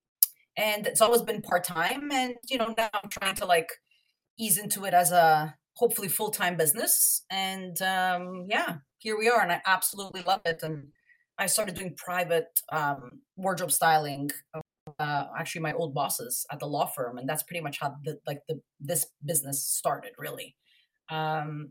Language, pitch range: English, 155-185 Hz